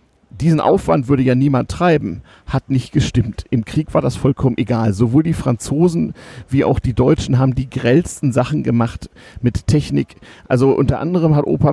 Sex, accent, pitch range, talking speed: male, German, 120-145 Hz, 175 wpm